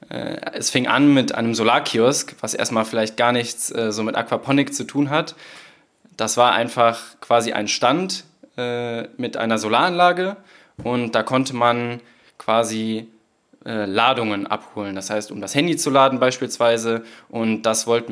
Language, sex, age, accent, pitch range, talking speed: German, male, 20-39, German, 110-130 Hz, 155 wpm